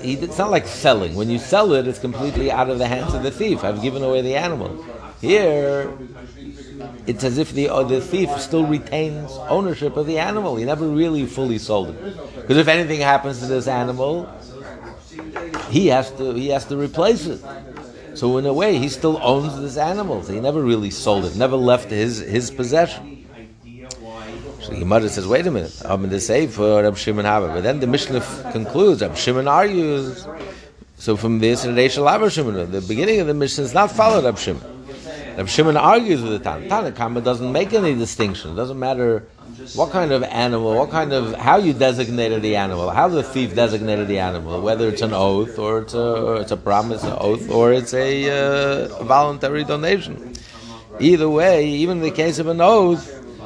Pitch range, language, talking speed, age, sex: 115-145 Hz, English, 185 wpm, 60-79, male